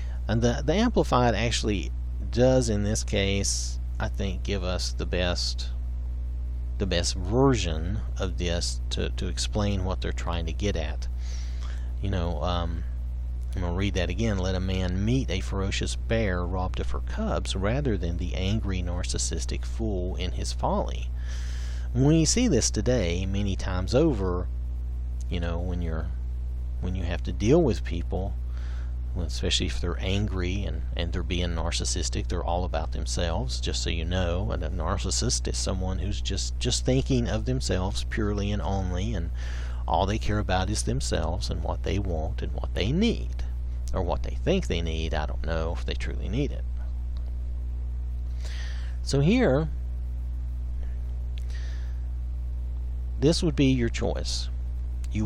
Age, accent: 40-59, American